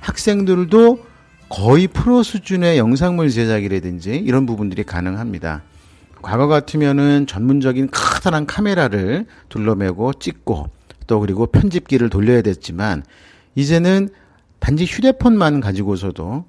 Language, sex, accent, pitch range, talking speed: English, male, Korean, 95-150 Hz, 90 wpm